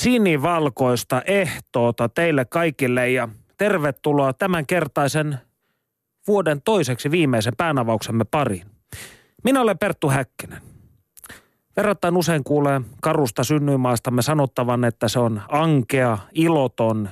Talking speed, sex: 100 wpm, male